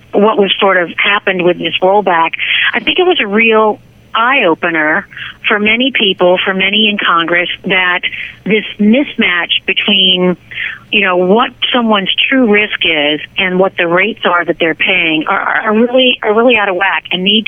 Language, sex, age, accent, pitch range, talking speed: English, female, 50-69, American, 180-210 Hz, 175 wpm